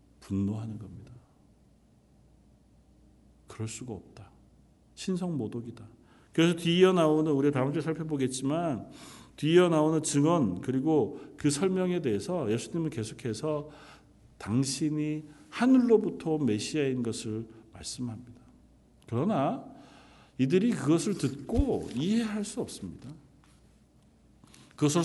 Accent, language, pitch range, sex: native, Korean, 130-195 Hz, male